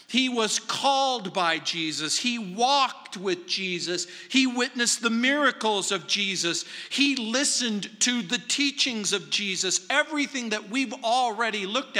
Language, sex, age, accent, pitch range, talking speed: English, male, 50-69, American, 190-250 Hz, 135 wpm